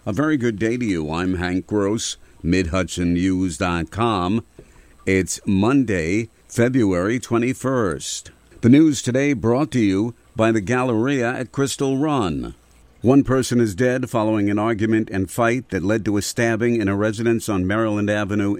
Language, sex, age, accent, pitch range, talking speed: English, male, 50-69, American, 85-110 Hz, 150 wpm